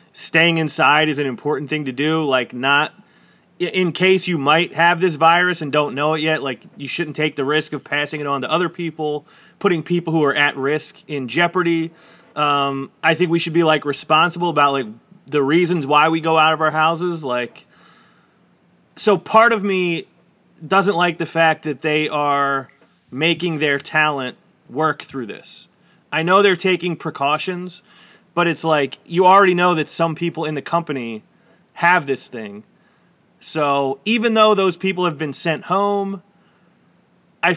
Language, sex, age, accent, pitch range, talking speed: English, male, 30-49, American, 145-180 Hz, 175 wpm